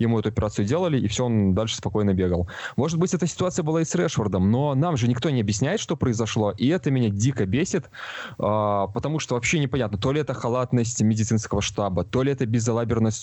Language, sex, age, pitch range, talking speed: Russian, male, 20-39, 100-125 Hz, 205 wpm